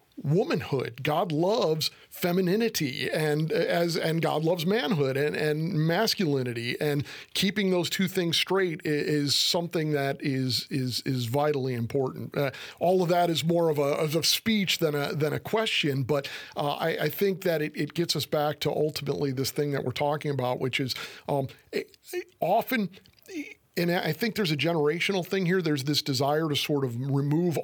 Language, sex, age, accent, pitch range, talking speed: English, male, 50-69, American, 145-170 Hz, 185 wpm